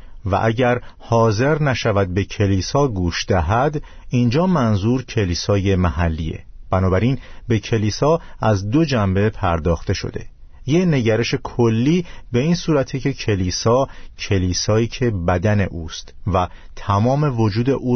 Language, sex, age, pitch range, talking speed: Persian, male, 50-69, 95-125 Hz, 120 wpm